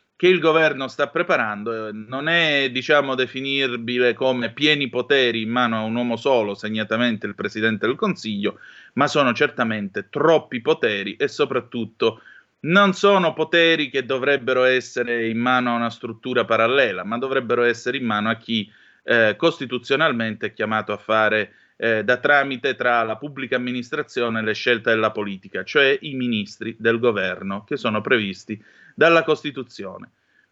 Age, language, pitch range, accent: 30-49, Italian, 110-150 Hz, native